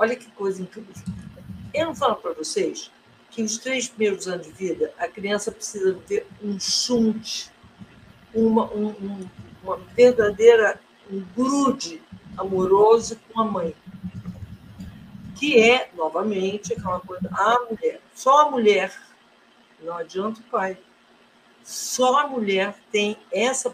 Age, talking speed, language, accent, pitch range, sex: 60-79, 125 wpm, Portuguese, Brazilian, 190-240 Hz, female